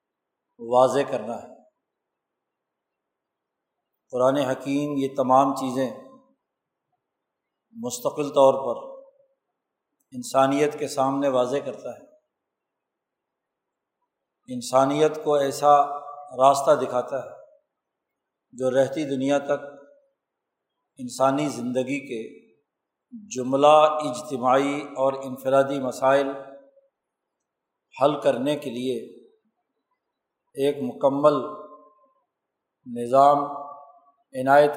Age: 50-69